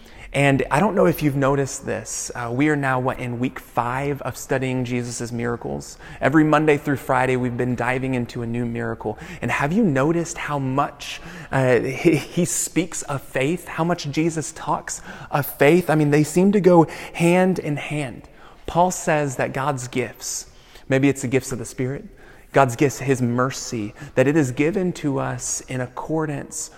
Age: 30-49